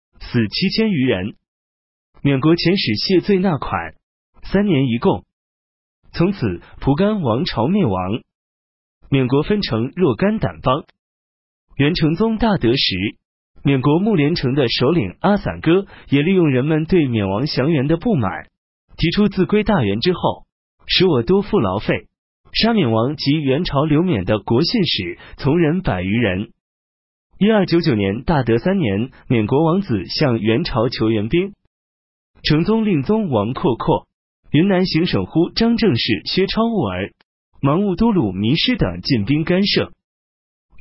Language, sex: Chinese, male